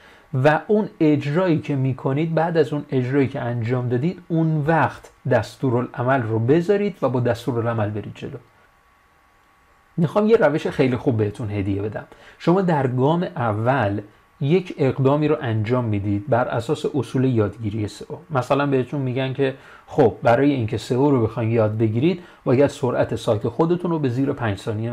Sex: male